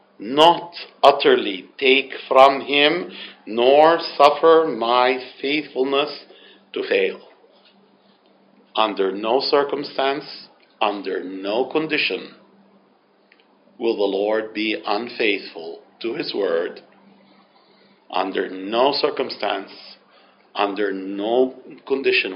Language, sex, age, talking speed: English, male, 50-69, 85 wpm